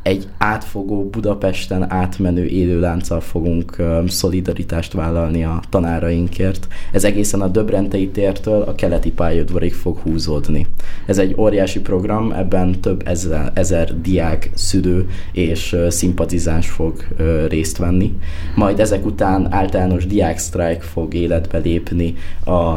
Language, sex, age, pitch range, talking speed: Hungarian, male, 20-39, 85-95 Hz, 115 wpm